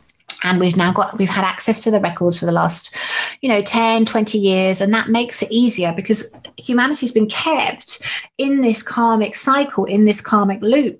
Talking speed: 195 wpm